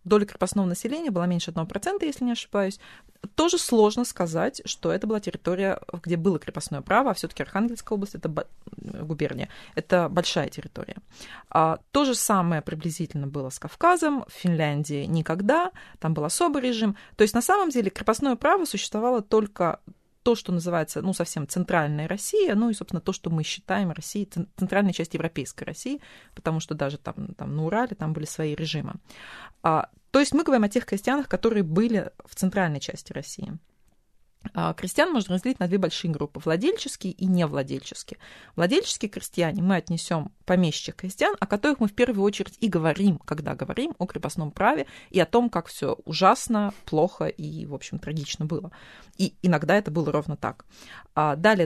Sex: female